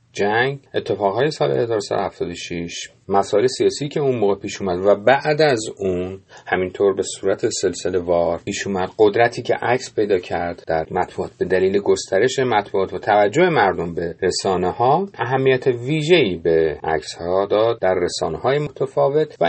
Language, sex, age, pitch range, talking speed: Persian, male, 40-59, 95-145 Hz, 155 wpm